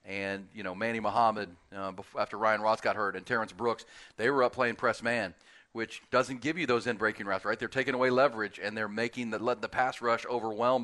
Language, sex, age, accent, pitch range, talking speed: English, male, 40-59, American, 105-120 Hz, 235 wpm